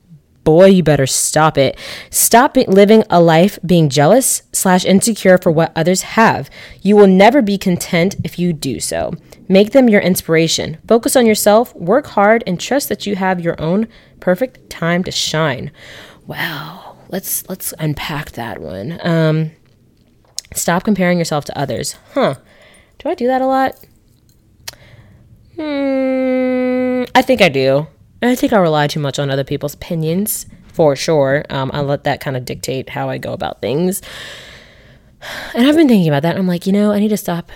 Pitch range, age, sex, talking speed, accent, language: 145-205 Hz, 20-39, female, 175 wpm, American, English